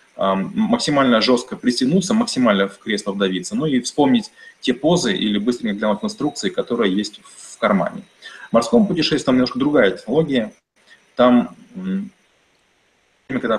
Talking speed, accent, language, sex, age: 130 wpm, native, Russian, male, 30-49